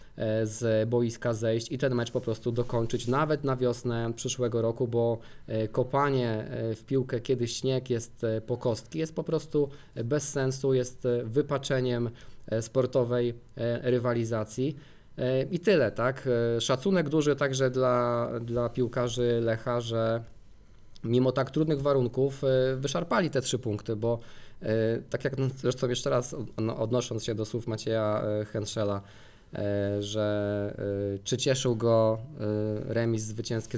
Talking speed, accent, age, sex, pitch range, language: 125 wpm, native, 20-39, male, 110-135 Hz, Polish